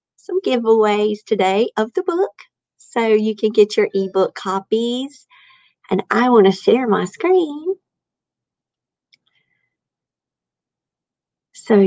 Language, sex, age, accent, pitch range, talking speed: English, female, 40-59, American, 195-310 Hz, 105 wpm